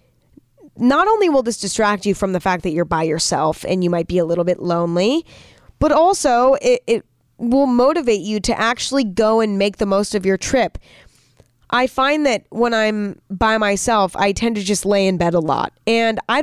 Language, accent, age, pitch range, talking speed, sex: English, American, 20-39, 170-225 Hz, 205 wpm, female